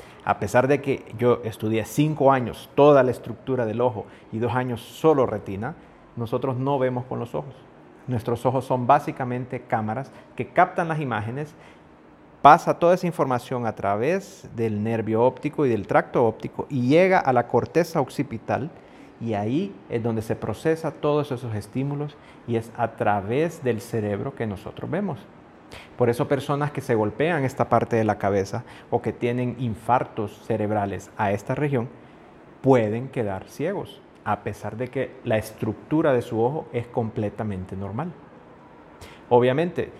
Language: Spanish